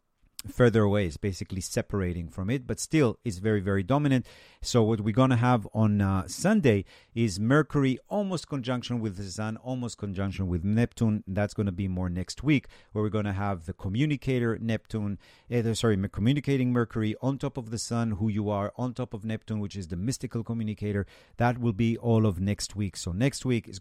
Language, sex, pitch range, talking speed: English, male, 100-125 Hz, 200 wpm